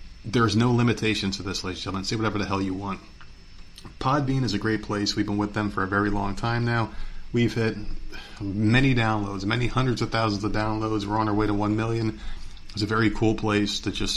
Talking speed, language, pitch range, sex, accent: 225 wpm, English, 95-110 Hz, male, American